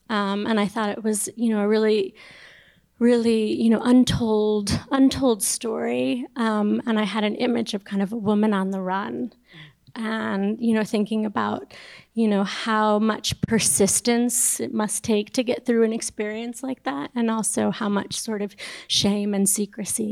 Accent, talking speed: American, 175 wpm